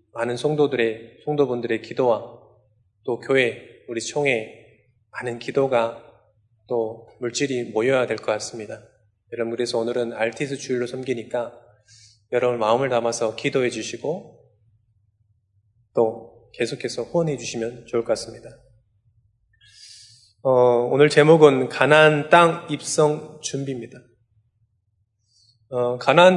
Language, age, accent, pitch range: Korean, 20-39, native, 110-140 Hz